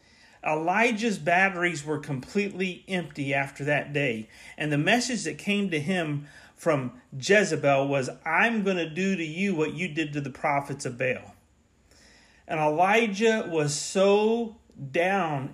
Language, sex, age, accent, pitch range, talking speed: English, male, 40-59, American, 145-195 Hz, 145 wpm